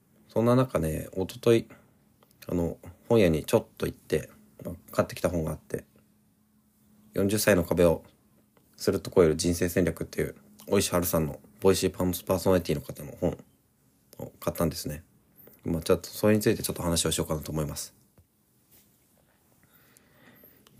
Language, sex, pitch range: Japanese, male, 85-105 Hz